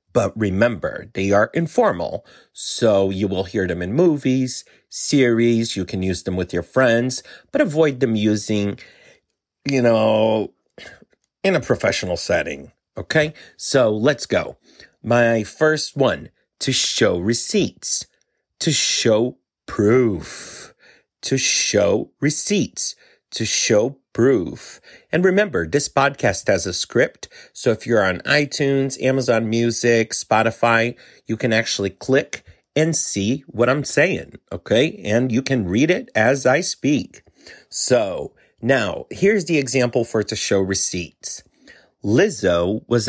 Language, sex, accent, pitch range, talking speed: English, male, American, 110-140 Hz, 130 wpm